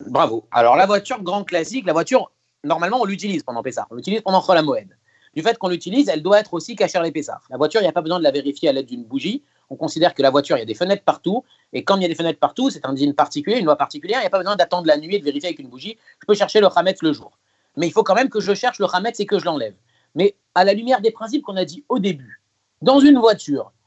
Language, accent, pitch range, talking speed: French, French, 150-210 Hz, 295 wpm